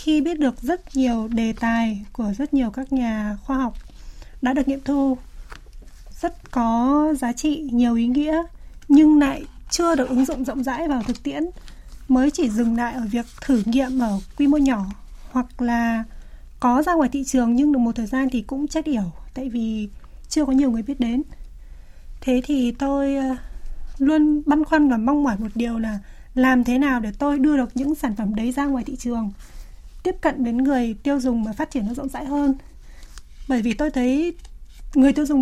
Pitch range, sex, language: 235-285 Hz, female, Vietnamese